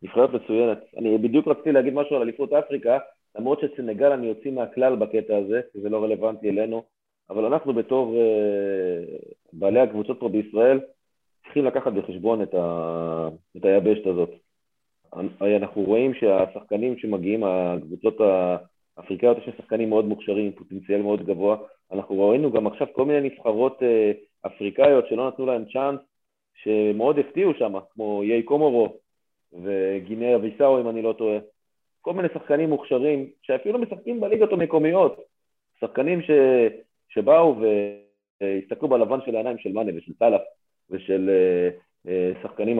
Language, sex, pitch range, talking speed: Hebrew, male, 95-130 Hz, 130 wpm